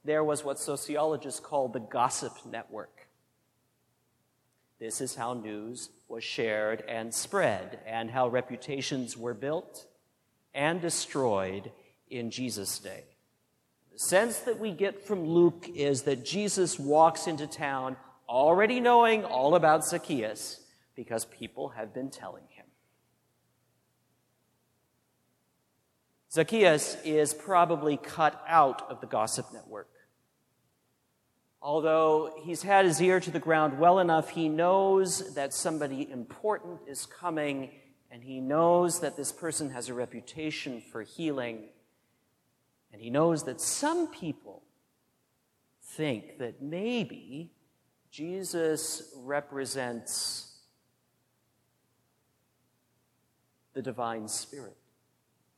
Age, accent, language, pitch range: 50-69, American, English, 125-170 Hz